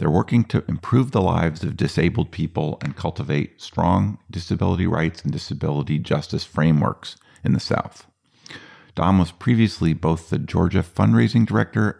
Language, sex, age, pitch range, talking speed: English, male, 50-69, 75-95 Hz, 145 wpm